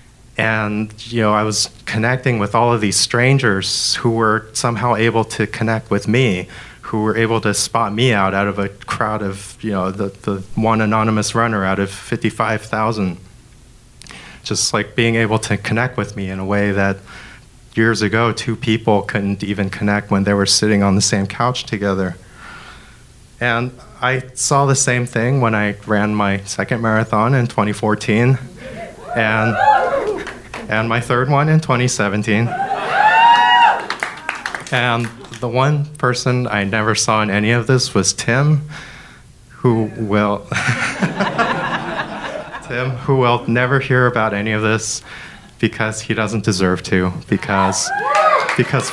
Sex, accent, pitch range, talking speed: male, American, 105-120 Hz, 150 wpm